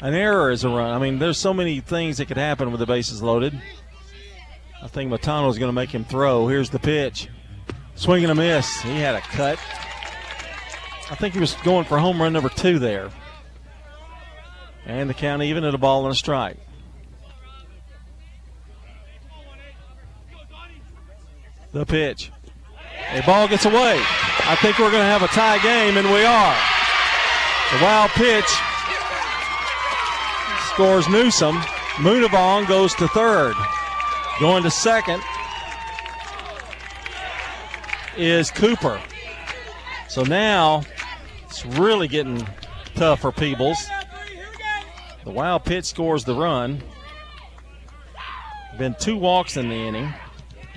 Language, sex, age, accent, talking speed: English, male, 40-59, American, 130 wpm